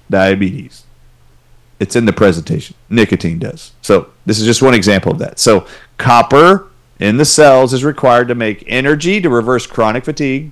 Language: English